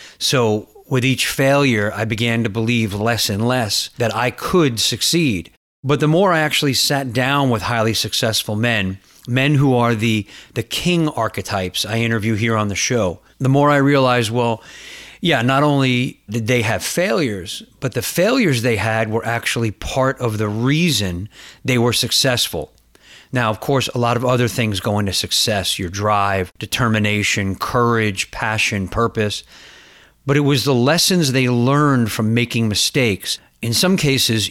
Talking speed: 165 wpm